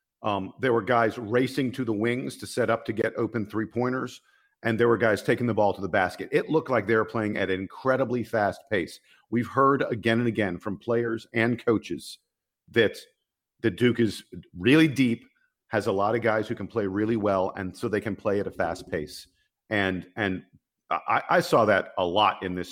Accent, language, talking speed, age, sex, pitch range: American, English, 215 wpm, 50-69, male, 105-135 Hz